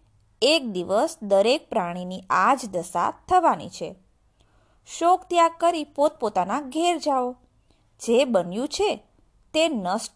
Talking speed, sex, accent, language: 110 wpm, female, native, Gujarati